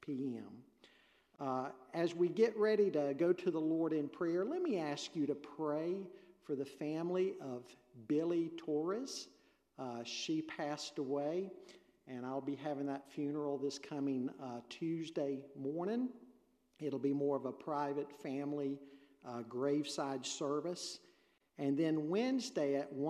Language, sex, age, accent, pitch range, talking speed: English, male, 50-69, American, 125-155 Hz, 140 wpm